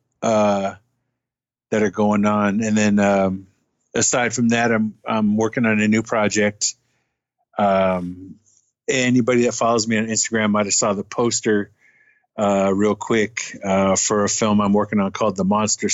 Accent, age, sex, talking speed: American, 50-69, male, 160 wpm